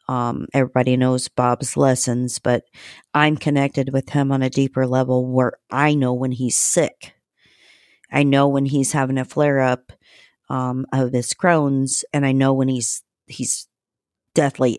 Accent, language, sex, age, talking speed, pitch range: American, English, female, 50-69, 155 wpm, 130-140 Hz